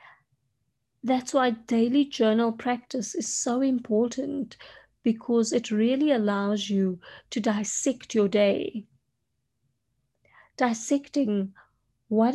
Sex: female